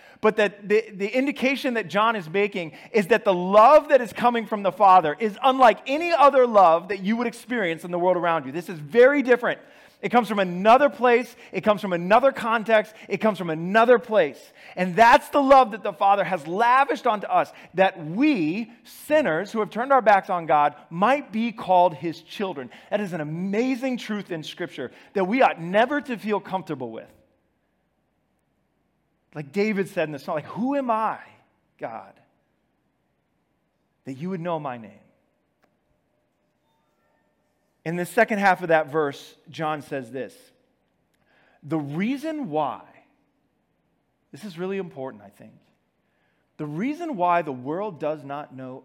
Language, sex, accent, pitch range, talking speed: English, male, American, 165-235 Hz, 170 wpm